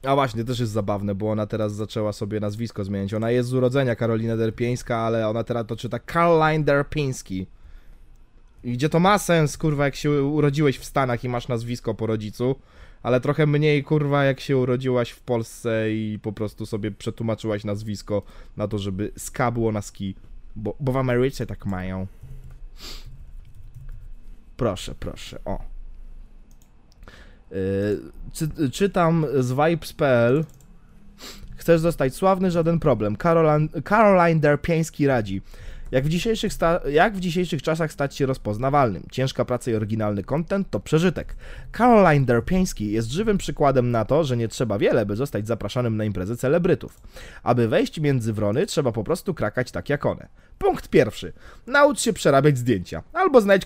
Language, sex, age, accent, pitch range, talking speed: Polish, male, 20-39, native, 110-160 Hz, 155 wpm